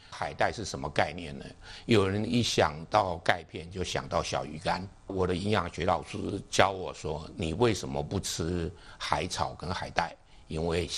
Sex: male